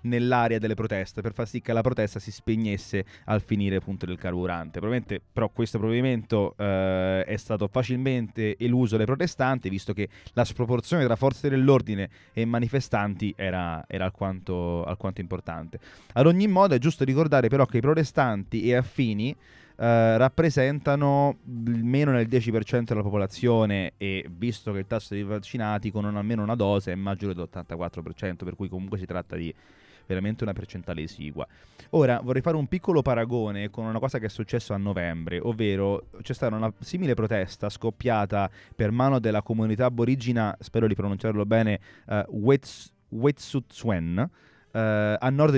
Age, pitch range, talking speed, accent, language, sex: 20-39, 100-130 Hz, 155 wpm, native, Italian, male